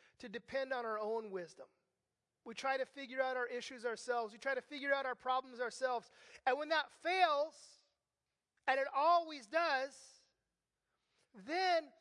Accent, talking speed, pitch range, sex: American, 155 wpm, 230-285 Hz, male